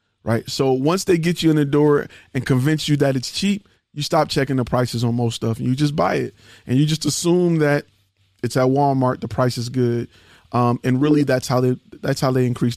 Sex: male